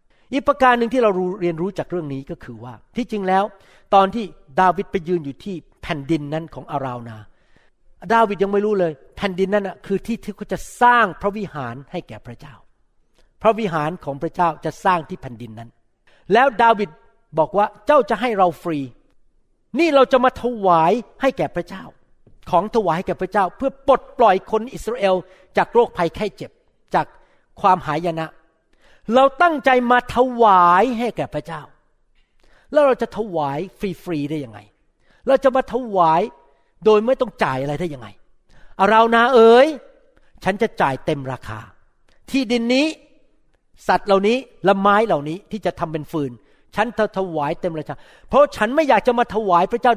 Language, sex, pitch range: Thai, male, 155-230 Hz